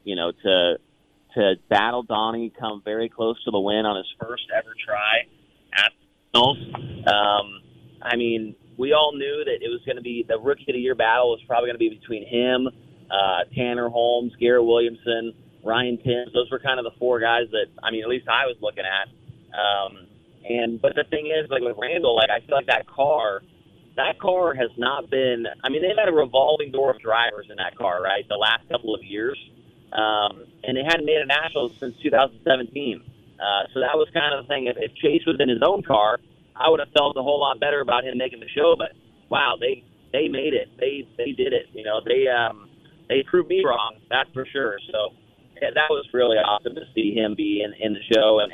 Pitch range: 115-150 Hz